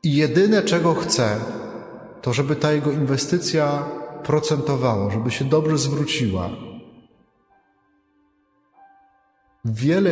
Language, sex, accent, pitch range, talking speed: Polish, male, native, 120-155 Hz, 90 wpm